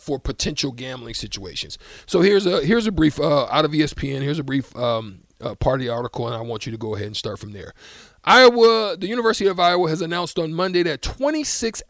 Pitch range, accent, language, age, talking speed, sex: 140-200 Hz, American, English, 40-59, 225 wpm, male